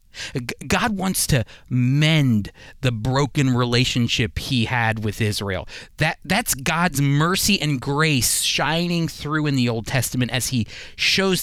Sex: male